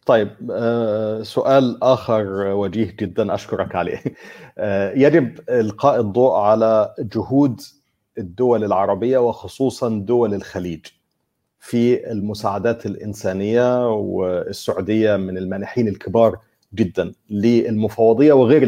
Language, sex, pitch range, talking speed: Arabic, male, 105-125 Hz, 85 wpm